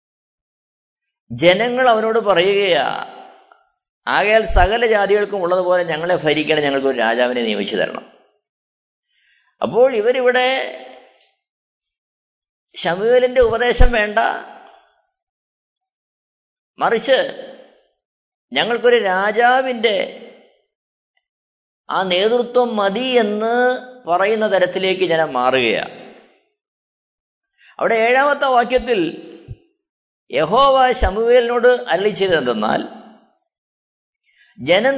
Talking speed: 60 wpm